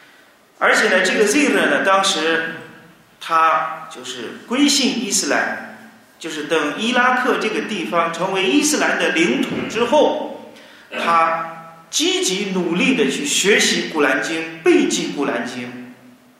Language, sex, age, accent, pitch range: Chinese, male, 30-49, native, 165-245 Hz